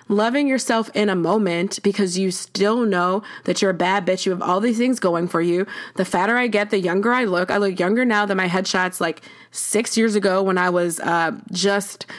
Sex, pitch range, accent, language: female, 190-250 Hz, American, English